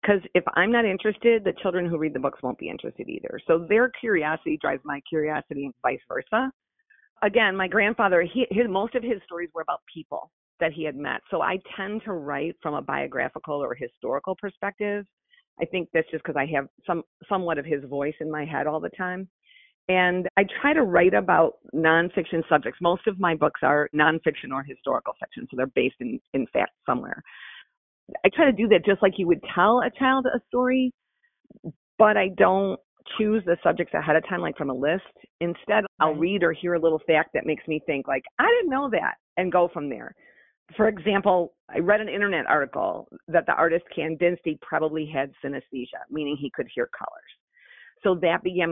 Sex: female